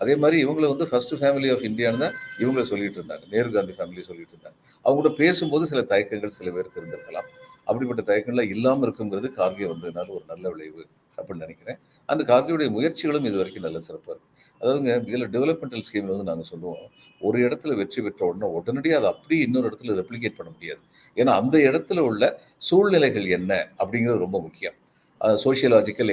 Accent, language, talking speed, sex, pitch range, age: native, Tamil, 170 wpm, male, 120-170 Hz, 50-69